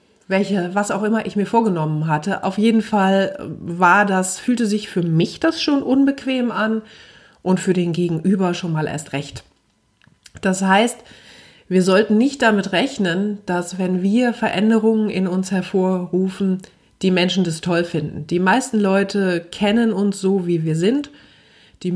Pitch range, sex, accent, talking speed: 175-220 Hz, female, German, 160 wpm